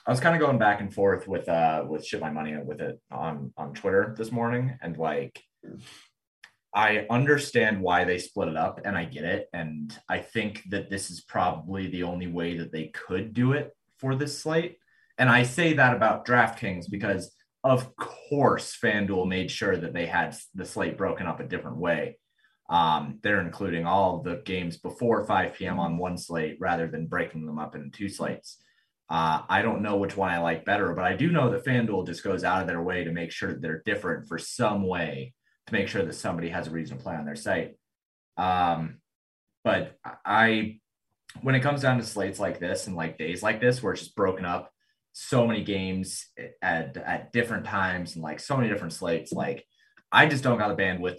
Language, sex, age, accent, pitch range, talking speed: English, male, 30-49, American, 85-120 Hz, 210 wpm